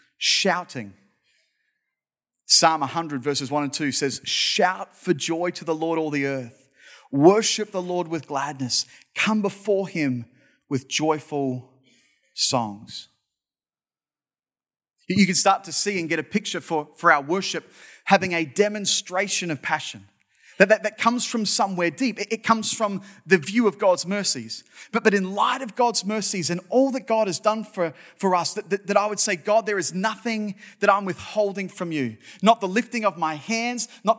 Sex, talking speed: male, 175 wpm